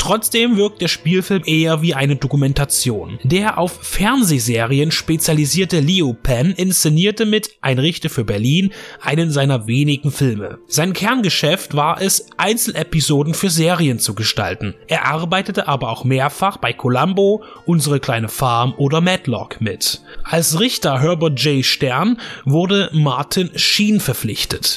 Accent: German